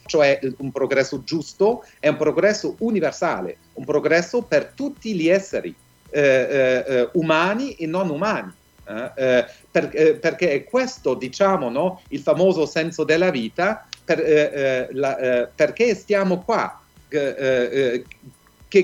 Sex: male